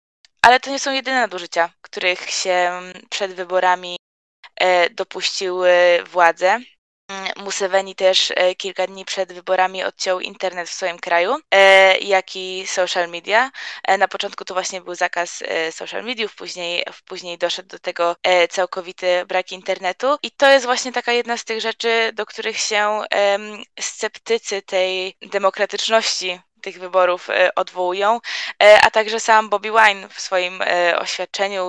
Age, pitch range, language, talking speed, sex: 20-39, 180-210 Hz, Polish, 130 wpm, female